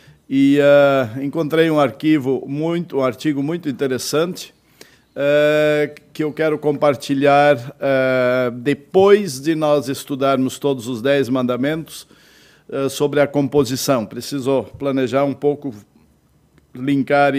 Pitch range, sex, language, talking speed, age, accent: 135-160 Hz, male, Portuguese, 115 wpm, 60-79, Brazilian